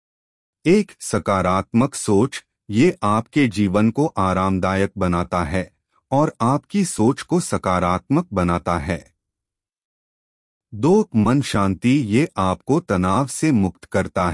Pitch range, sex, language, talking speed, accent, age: 90-130 Hz, male, Hindi, 110 wpm, native, 30-49